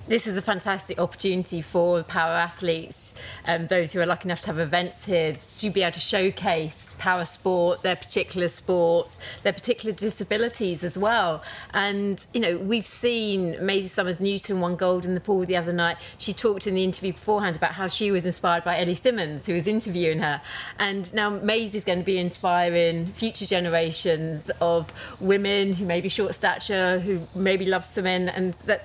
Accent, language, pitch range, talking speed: British, English, 170-200 Hz, 185 wpm